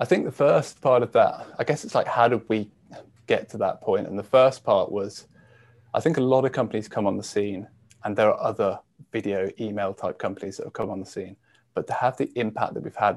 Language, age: English, 20-39